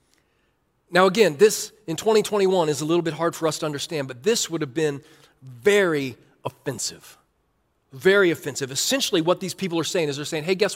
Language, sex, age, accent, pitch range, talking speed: English, male, 40-59, American, 140-235 Hz, 190 wpm